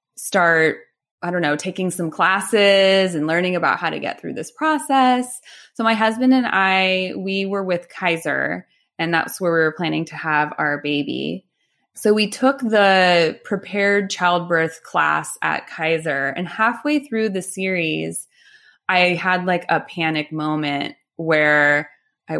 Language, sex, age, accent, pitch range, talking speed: English, female, 20-39, American, 170-220 Hz, 155 wpm